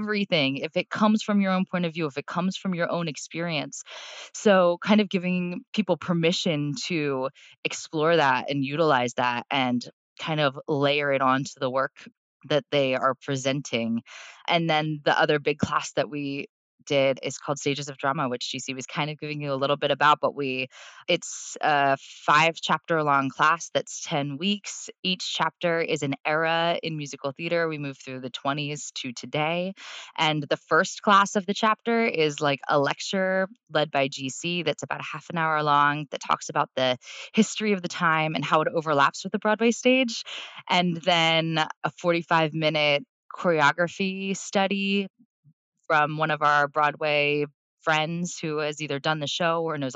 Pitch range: 140-170 Hz